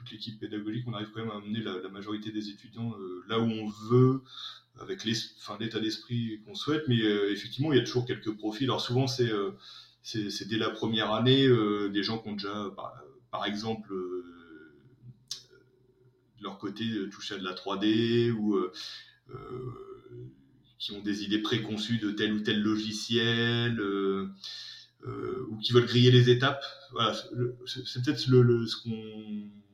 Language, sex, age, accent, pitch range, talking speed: French, male, 30-49, French, 105-125 Hz, 185 wpm